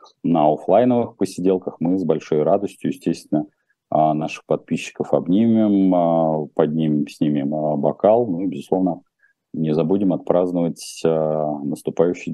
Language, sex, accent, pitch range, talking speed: Russian, male, native, 80-105 Hz, 100 wpm